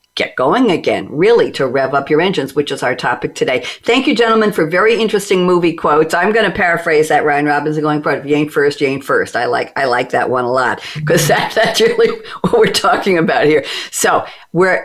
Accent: American